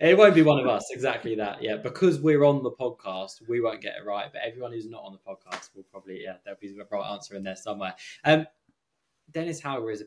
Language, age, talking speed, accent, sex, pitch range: English, 20-39, 260 wpm, British, male, 115-155 Hz